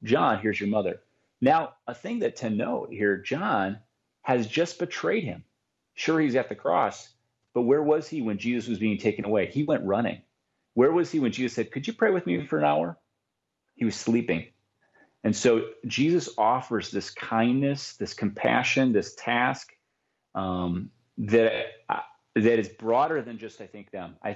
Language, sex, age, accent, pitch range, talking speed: English, male, 30-49, American, 100-125 Hz, 180 wpm